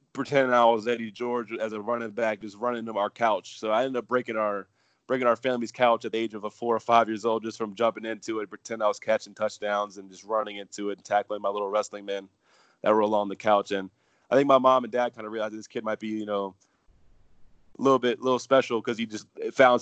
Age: 20-39